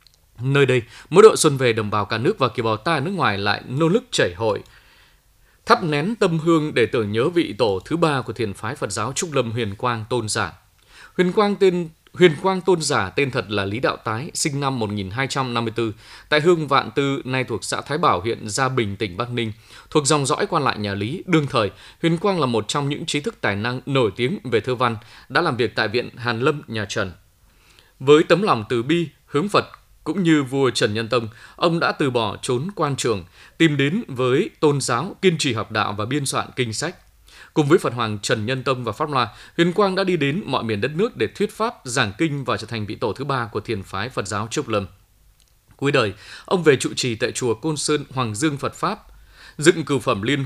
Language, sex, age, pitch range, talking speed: Vietnamese, male, 20-39, 110-155 Hz, 235 wpm